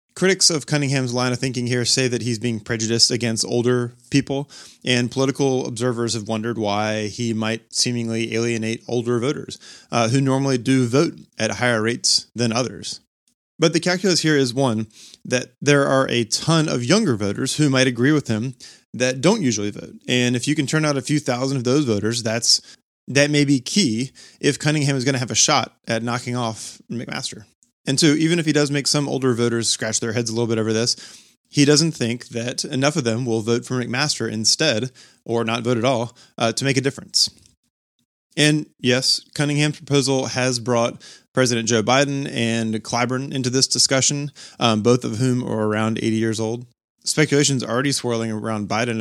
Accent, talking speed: American, 195 wpm